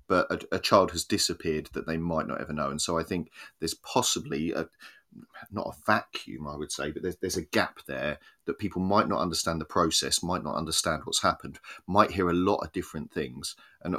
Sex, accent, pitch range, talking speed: male, British, 80-105 Hz, 220 wpm